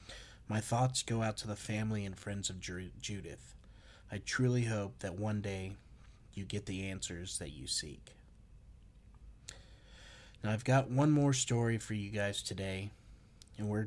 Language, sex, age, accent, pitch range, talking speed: English, male, 30-49, American, 95-115 Hz, 155 wpm